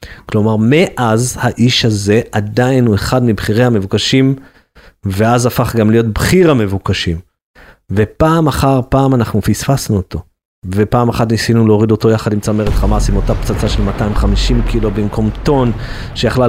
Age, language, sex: 30-49, Hebrew, male